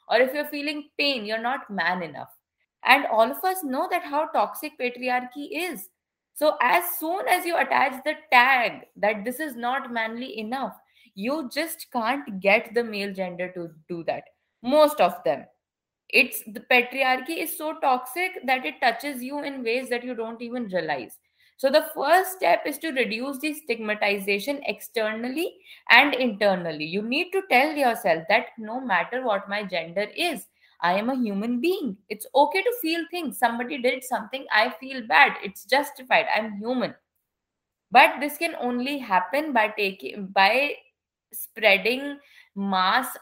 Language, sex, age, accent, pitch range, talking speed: English, female, 20-39, Indian, 200-270 Hz, 160 wpm